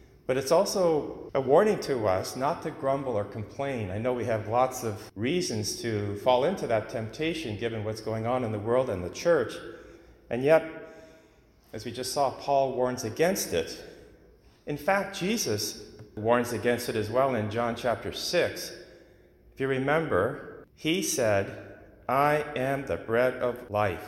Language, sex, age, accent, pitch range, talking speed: English, male, 40-59, American, 100-125 Hz, 165 wpm